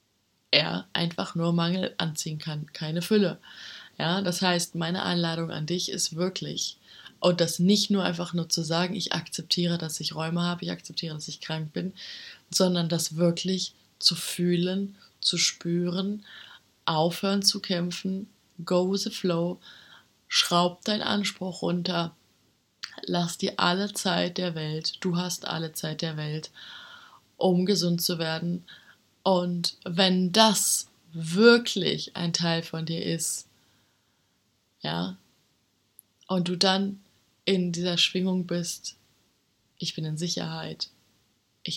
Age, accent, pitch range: 20-39, German, 160-185 Hz